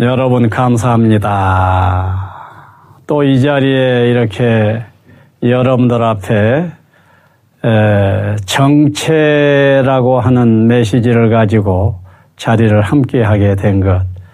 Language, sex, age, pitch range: Korean, male, 40-59, 105-135 Hz